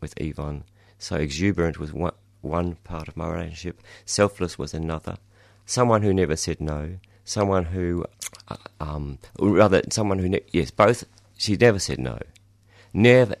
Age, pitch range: 30-49, 75-100 Hz